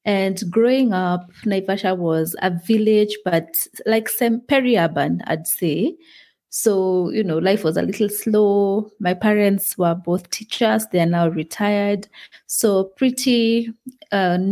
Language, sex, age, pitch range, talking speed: English, female, 30-49, 170-210 Hz, 130 wpm